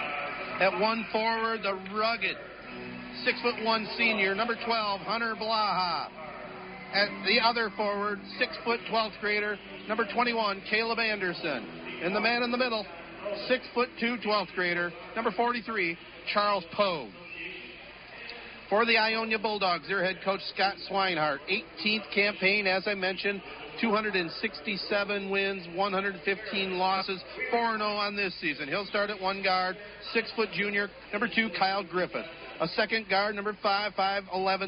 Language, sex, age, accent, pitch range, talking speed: English, male, 50-69, American, 185-220 Hz, 135 wpm